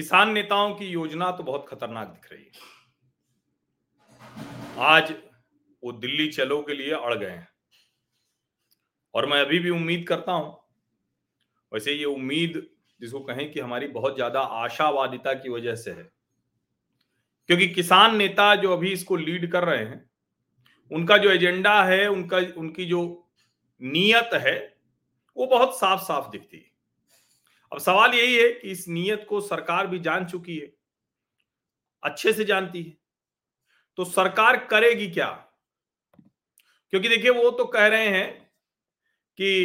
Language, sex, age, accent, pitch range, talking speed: Hindi, male, 40-59, native, 160-200 Hz, 140 wpm